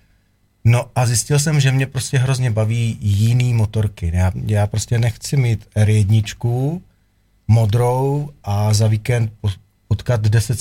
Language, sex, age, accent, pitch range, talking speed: Czech, male, 40-59, native, 100-120 Hz, 130 wpm